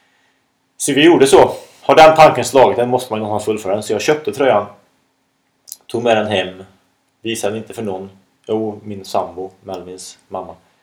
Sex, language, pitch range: male, Swedish, 105-135 Hz